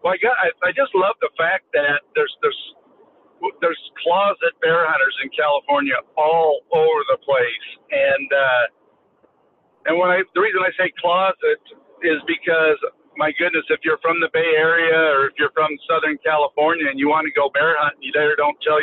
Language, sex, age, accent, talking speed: English, male, 50-69, American, 185 wpm